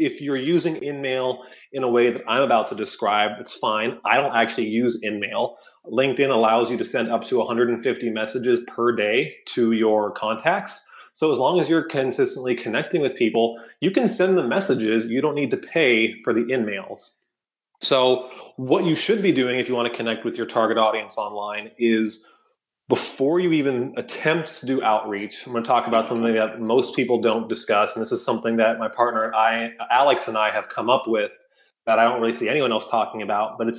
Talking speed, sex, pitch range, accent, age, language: 205 wpm, male, 115-140 Hz, American, 20-39, English